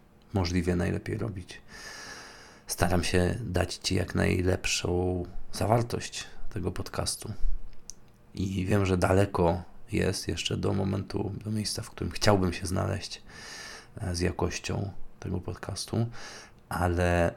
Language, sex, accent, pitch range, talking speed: Polish, male, native, 90-100 Hz, 110 wpm